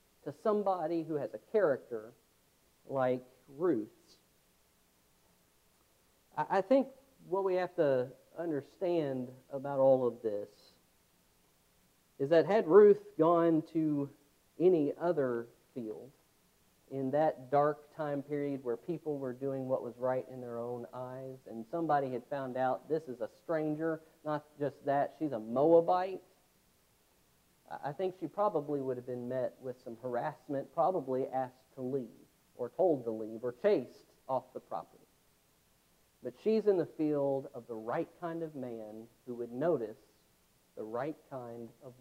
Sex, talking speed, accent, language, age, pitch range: male, 145 wpm, American, English, 40-59, 120-160 Hz